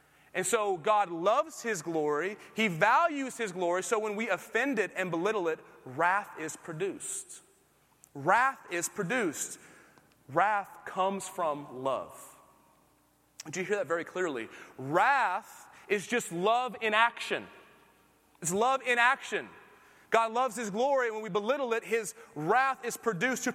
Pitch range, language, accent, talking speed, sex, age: 185-245 Hz, English, American, 145 wpm, male, 30-49